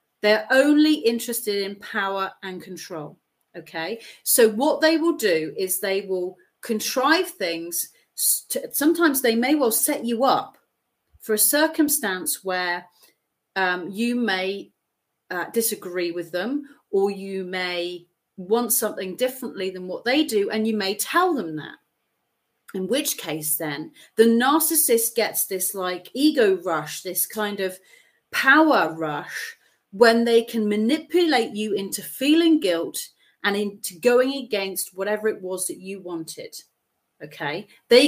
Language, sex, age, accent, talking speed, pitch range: English, female, 40-59, British, 140 wpm, 190-275 Hz